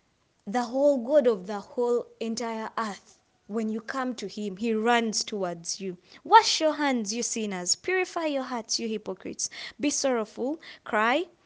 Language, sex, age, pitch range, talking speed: English, female, 20-39, 200-270 Hz, 155 wpm